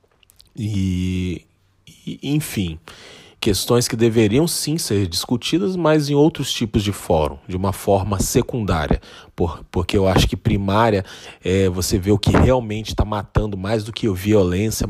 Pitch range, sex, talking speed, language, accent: 90-105 Hz, male, 140 wpm, Portuguese, Brazilian